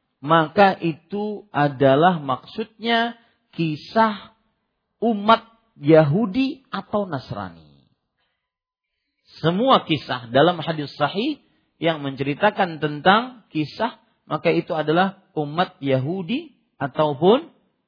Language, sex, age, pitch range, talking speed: Malay, male, 40-59, 145-215 Hz, 80 wpm